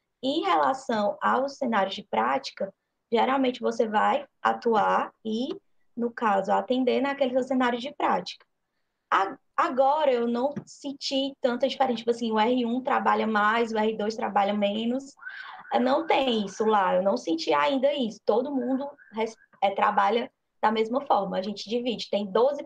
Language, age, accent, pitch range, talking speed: Portuguese, 10-29, Brazilian, 200-265 Hz, 155 wpm